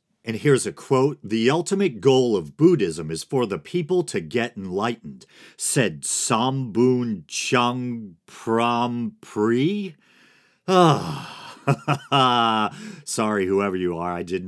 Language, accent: English, American